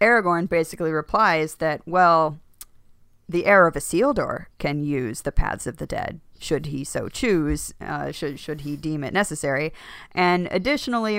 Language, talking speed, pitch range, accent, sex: English, 155 wpm, 145-170 Hz, American, female